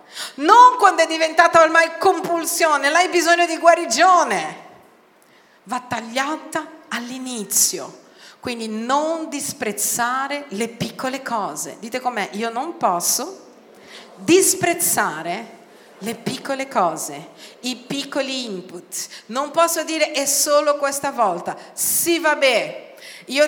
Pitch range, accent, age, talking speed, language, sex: 245-325 Hz, native, 40-59, 105 wpm, Italian, female